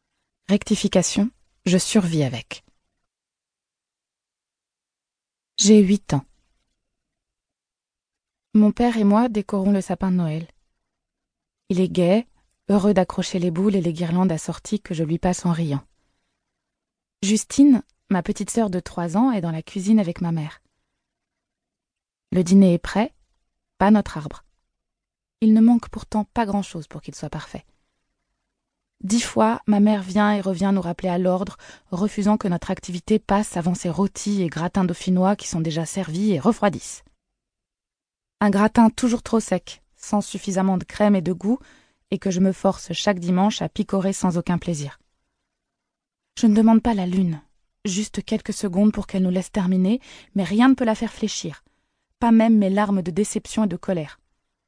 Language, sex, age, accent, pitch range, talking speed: French, female, 20-39, French, 180-210 Hz, 160 wpm